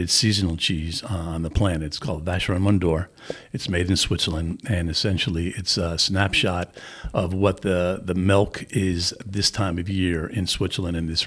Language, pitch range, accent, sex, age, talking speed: English, 85-100 Hz, American, male, 50-69, 170 wpm